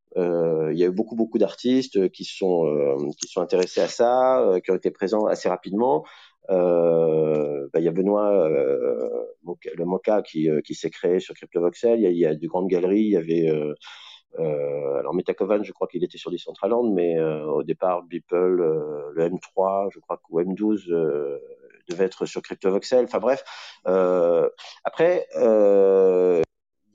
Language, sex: French, male